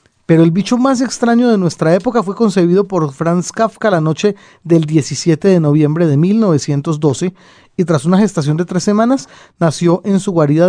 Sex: male